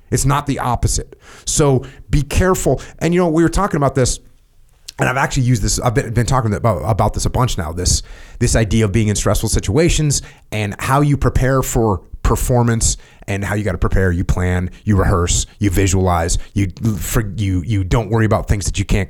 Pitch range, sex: 105-150 Hz, male